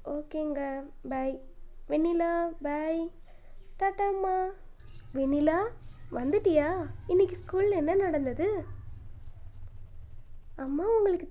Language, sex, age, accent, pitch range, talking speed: Tamil, female, 20-39, native, 275-365 Hz, 75 wpm